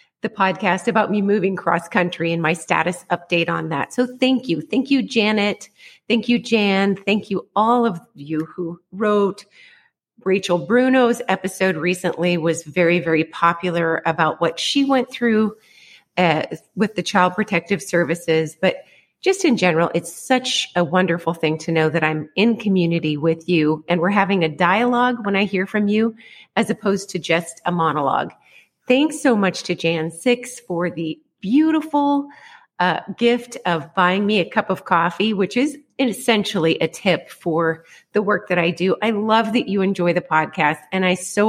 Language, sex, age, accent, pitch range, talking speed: English, female, 30-49, American, 170-230 Hz, 170 wpm